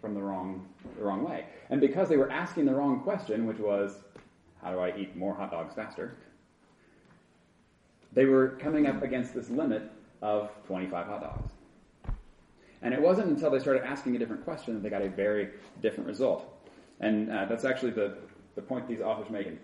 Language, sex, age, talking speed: English, male, 30-49, 195 wpm